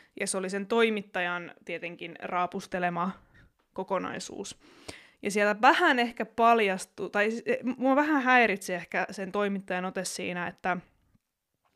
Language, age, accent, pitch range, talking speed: Finnish, 20-39, native, 185-225 Hz, 115 wpm